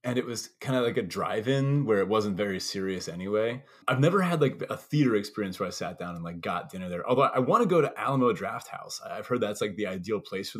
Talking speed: 260 wpm